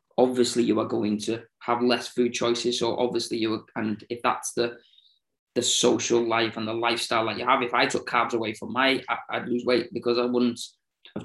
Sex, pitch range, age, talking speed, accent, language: male, 115-120 Hz, 20-39, 220 wpm, British, English